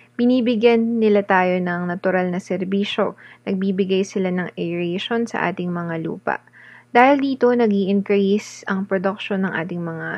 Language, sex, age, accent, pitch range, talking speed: Filipino, female, 20-39, native, 180-225 Hz, 140 wpm